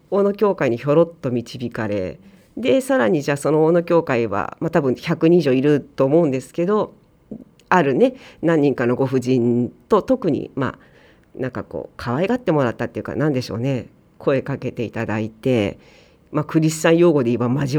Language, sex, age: Japanese, female, 40-59